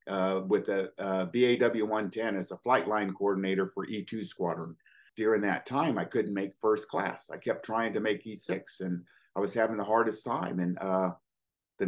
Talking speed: 185 wpm